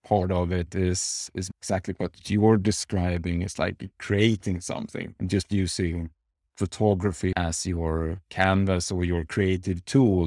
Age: 30-49